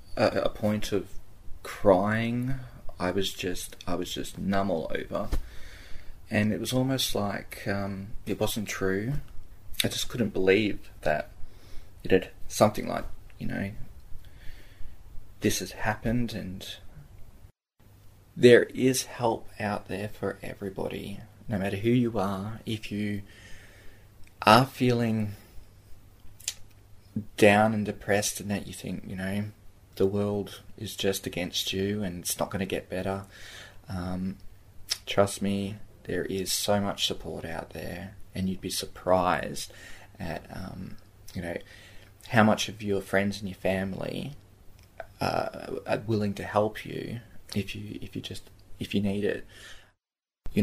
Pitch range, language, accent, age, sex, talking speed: 95-105 Hz, English, Australian, 20-39, male, 140 wpm